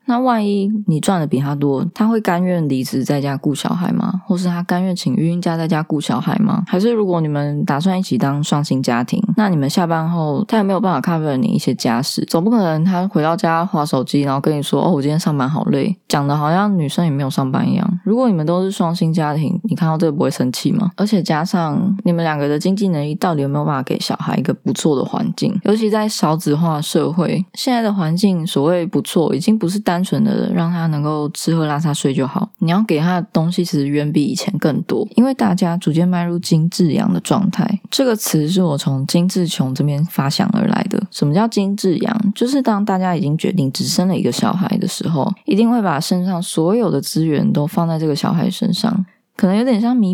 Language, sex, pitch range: Chinese, female, 155-205 Hz